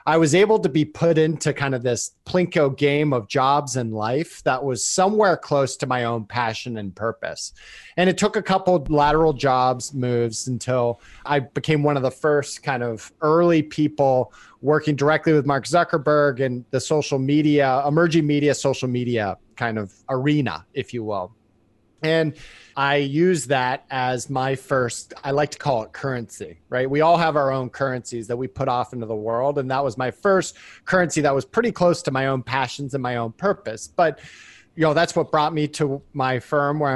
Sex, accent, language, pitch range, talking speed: male, American, English, 125-155 Hz, 195 wpm